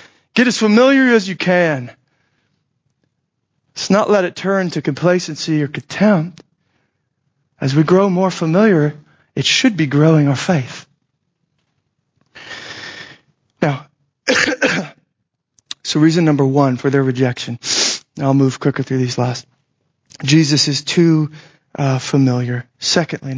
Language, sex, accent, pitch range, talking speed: English, male, American, 135-175 Hz, 120 wpm